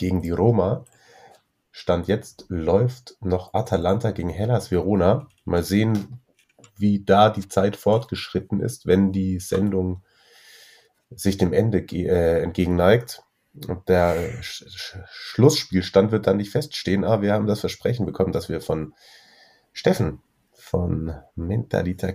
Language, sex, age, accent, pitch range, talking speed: German, male, 30-49, German, 85-105 Hz, 125 wpm